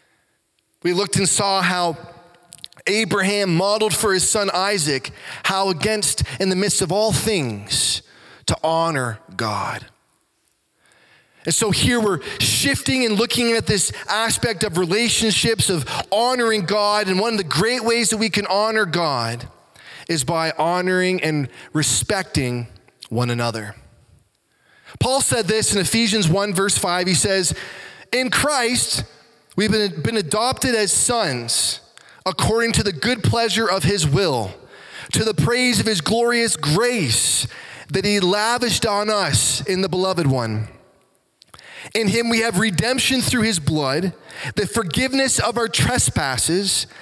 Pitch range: 160-220 Hz